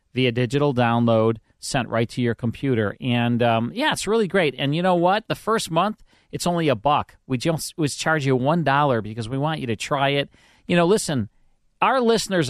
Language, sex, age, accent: English, male, 40-59, American